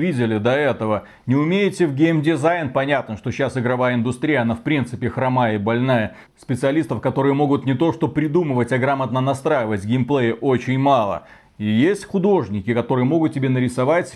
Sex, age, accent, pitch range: male, 30-49, native, 125-155 Hz